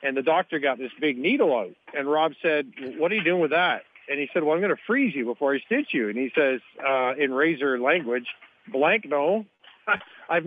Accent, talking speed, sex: American, 230 wpm, male